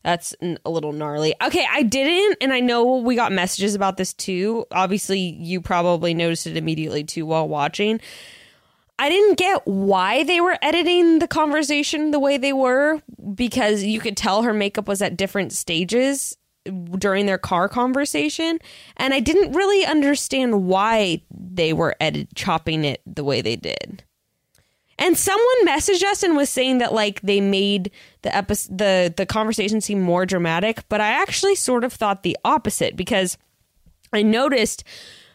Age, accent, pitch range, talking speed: 20-39, American, 190-270 Hz, 165 wpm